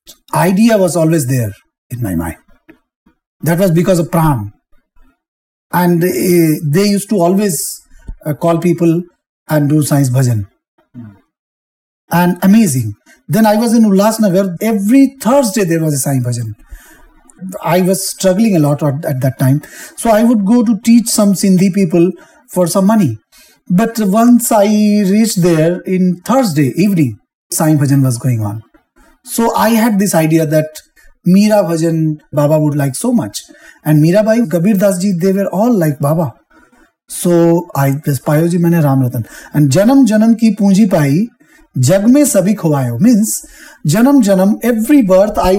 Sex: male